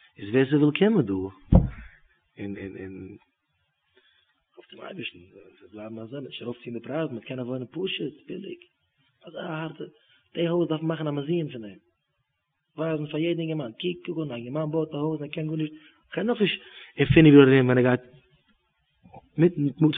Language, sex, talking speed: English, male, 175 wpm